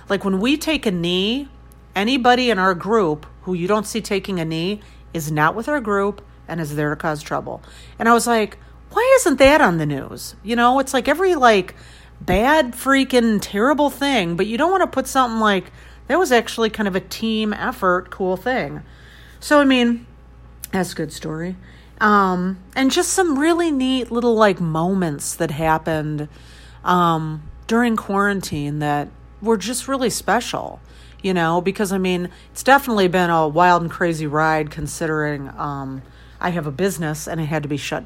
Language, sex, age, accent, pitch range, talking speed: English, female, 40-59, American, 155-235 Hz, 185 wpm